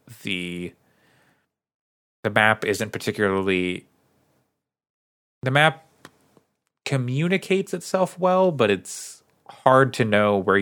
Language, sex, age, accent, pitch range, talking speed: English, male, 30-49, American, 90-130 Hz, 90 wpm